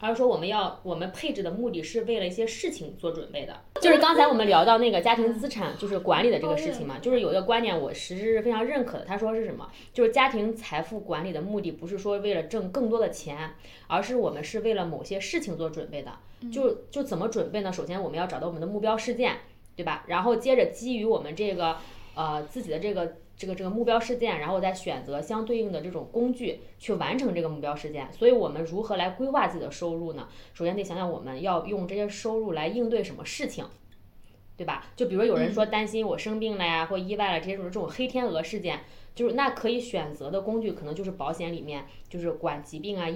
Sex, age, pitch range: female, 20-39, 170-230 Hz